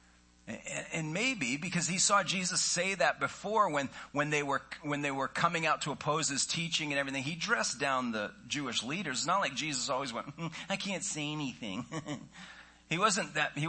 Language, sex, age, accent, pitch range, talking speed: English, male, 40-59, American, 115-160 Hz, 195 wpm